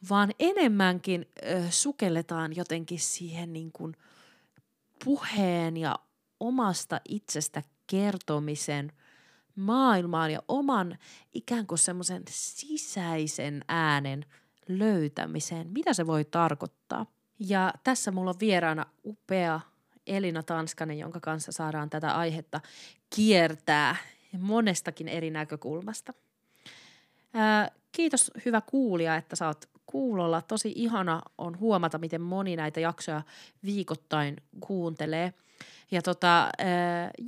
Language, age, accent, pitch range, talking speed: Finnish, 20-39, native, 165-220 Hz, 100 wpm